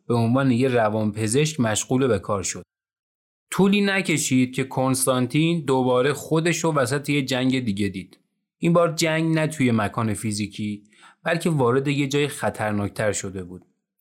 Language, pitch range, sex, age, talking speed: Persian, 115-155 Hz, male, 30-49, 150 wpm